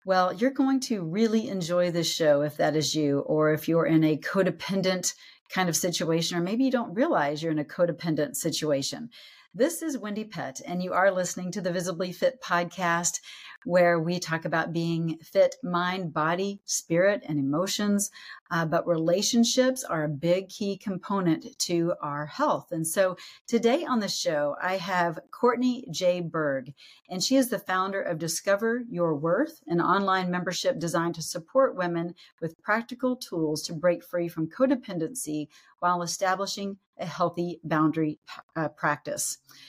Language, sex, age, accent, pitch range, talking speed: English, female, 40-59, American, 165-205 Hz, 165 wpm